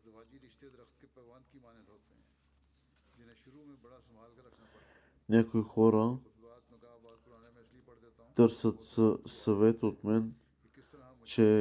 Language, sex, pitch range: Bulgarian, male, 110-120 Hz